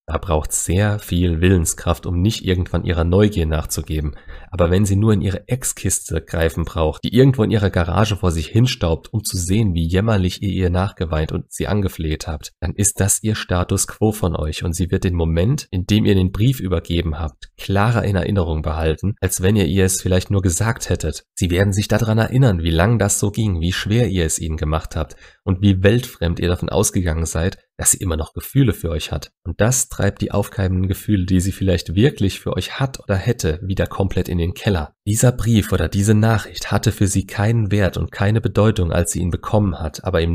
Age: 30-49